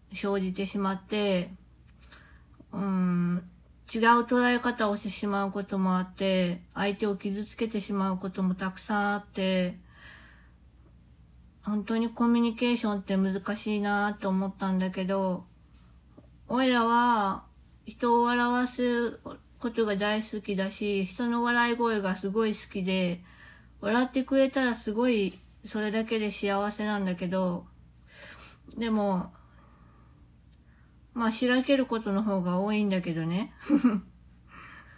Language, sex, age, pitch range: Japanese, female, 20-39, 180-230 Hz